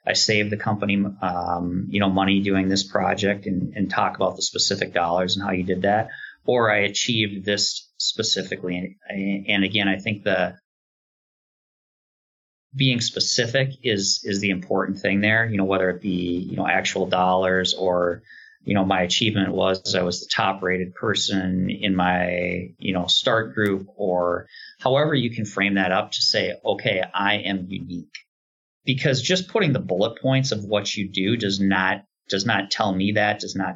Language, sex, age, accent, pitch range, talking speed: English, male, 30-49, American, 95-120 Hz, 180 wpm